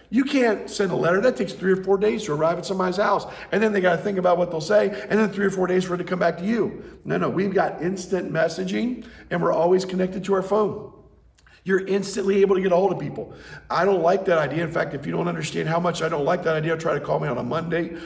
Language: English